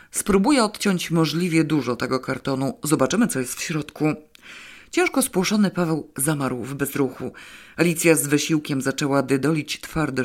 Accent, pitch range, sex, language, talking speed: native, 135-180 Hz, female, Polish, 135 wpm